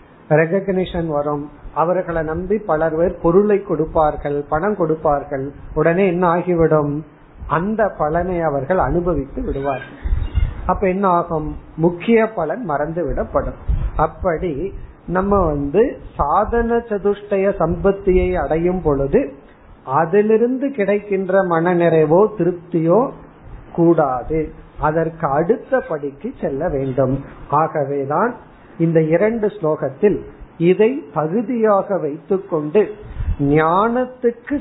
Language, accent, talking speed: Tamil, native, 70 wpm